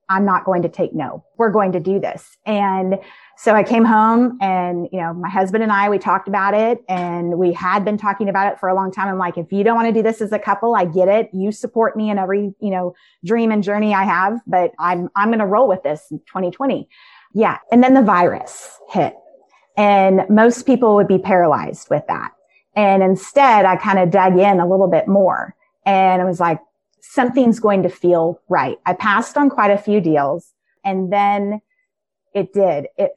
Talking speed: 220 wpm